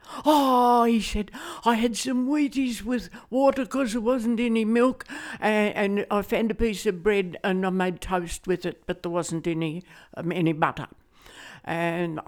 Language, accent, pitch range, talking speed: English, British, 170-225 Hz, 175 wpm